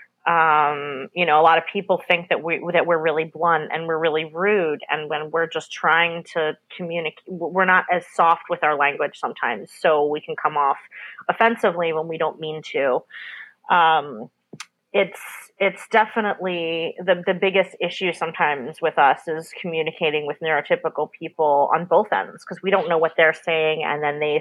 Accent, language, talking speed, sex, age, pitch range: American, English, 180 wpm, female, 30-49, 160-205 Hz